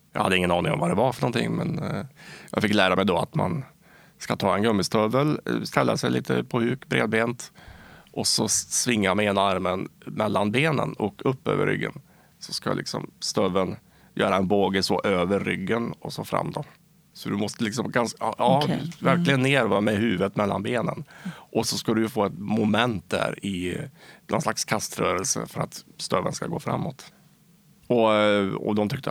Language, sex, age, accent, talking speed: Swedish, male, 30-49, Norwegian, 175 wpm